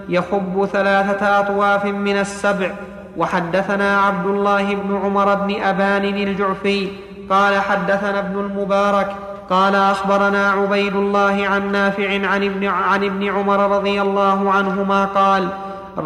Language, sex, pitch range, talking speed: Arabic, male, 195-200 Hz, 110 wpm